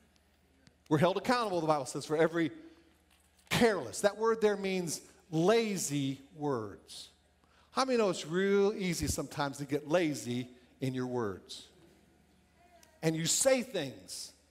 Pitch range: 140-205 Hz